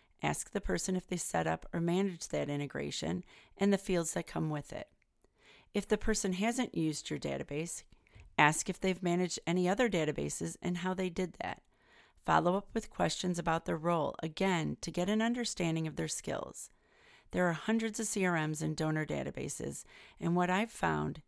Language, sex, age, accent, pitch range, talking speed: English, female, 40-59, American, 155-200 Hz, 180 wpm